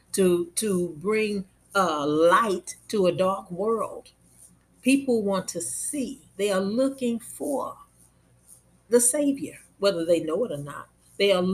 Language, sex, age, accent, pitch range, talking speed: English, female, 50-69, American, 160-220 Hz, 140 wpm